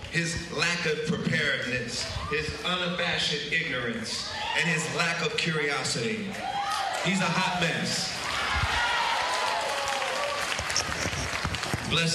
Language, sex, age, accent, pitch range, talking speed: English, male, 40-59, American, 130-175 Hz, 85 wpm